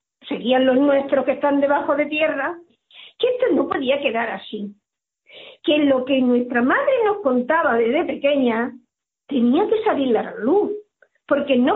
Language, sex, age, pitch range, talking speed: Spanish, female, 50-69, 250-350 Hz, 155 wpm